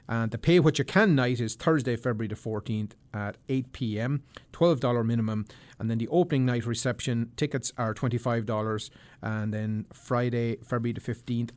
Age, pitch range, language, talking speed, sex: 30-49, 115-135 Hz, English, 165 wpm, male